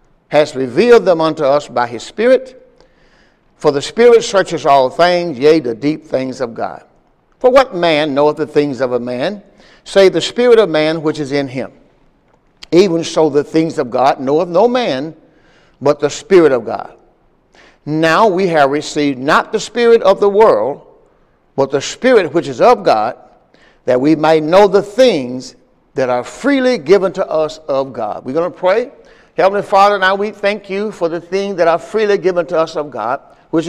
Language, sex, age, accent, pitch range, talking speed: English, male, 60-79, American, 155-200 Hz, 185 wpm